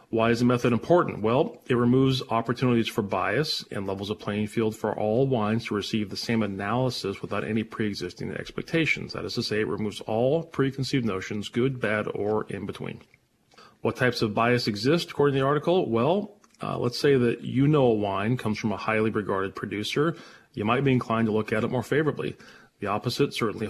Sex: male